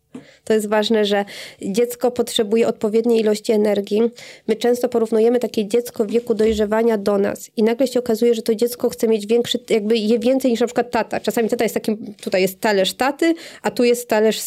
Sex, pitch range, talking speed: female, 215-240 Hz, 200 wpm